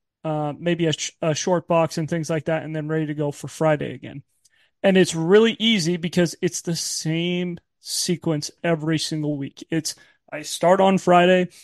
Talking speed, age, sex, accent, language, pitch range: 180 wpm, 30-49, male, American, English, 155-190 Hz